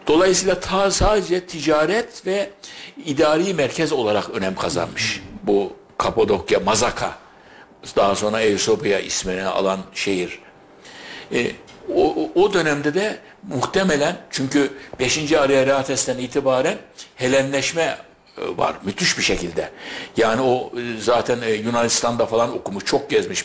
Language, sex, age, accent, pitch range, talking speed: Turkish, male, 60-79, native, 115-145 Hz, 110 wpm